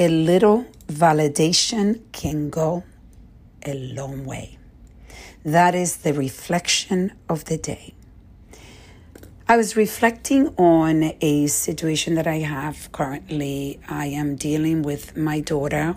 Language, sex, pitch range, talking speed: English, female, 145-170 Hz, 115 wpm